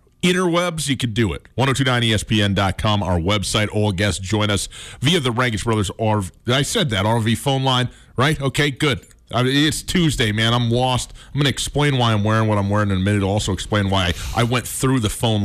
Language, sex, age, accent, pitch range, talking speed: English, male, 30-49, American, 95-120 Hz, 220 wpm